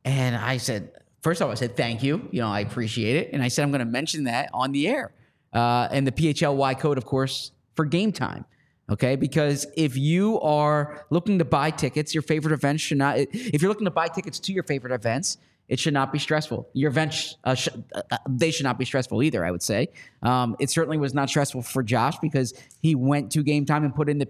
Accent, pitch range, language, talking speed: American, 140-165 Hz, English, 235 wpm